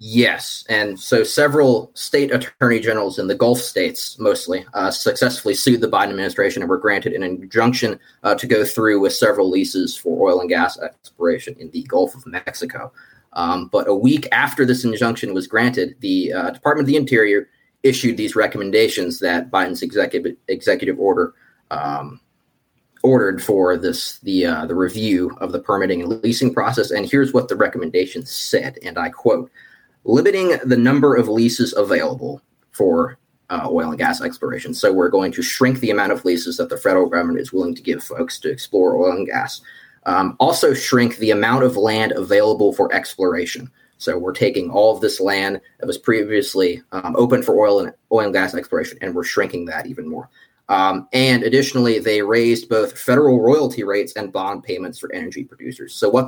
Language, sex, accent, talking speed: English, male, American, 185 wpm